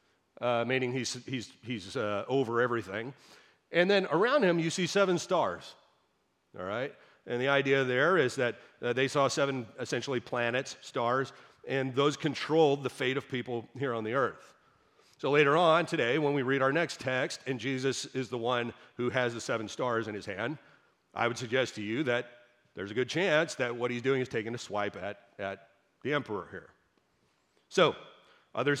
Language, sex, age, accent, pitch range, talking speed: English, male, 40-59, American, 120-145 Hz, 185 wpm